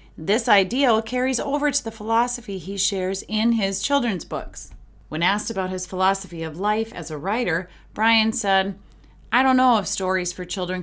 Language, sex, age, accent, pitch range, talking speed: English, female, 30-49, American, 180-225 Hz, 175 wpm